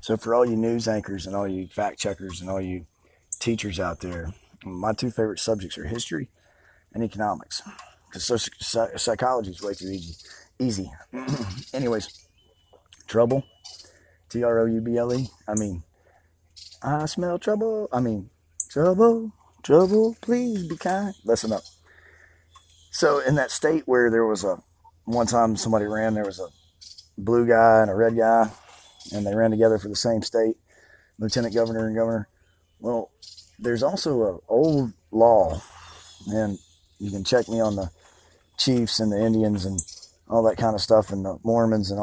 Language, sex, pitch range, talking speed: English, male, 95-120 Hz, 155 wpm